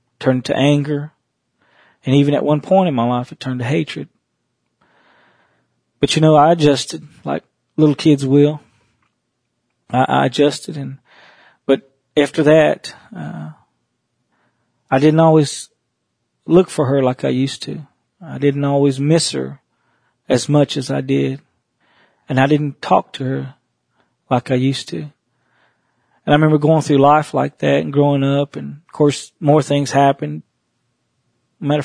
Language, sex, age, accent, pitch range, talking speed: English, male, 40-59, American, 130-150 Hz, 150 wpm